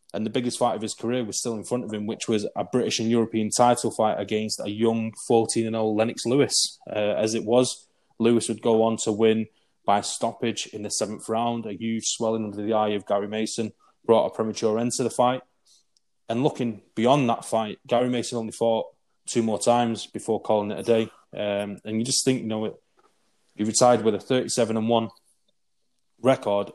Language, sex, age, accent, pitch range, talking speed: English, male, 20-39, British, 105-115 Hz, 205 wpm